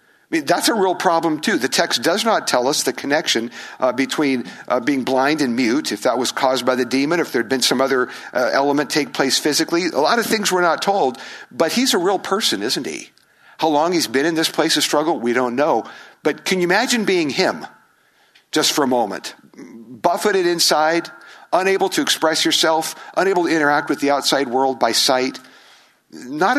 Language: English